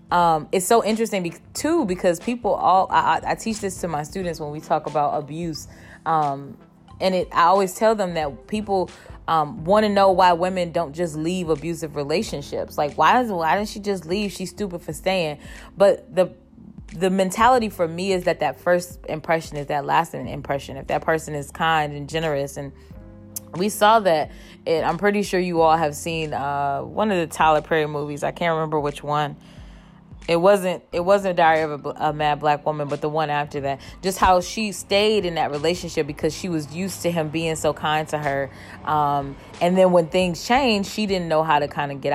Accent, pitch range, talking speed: American, 150-195 Hz, 215 wpm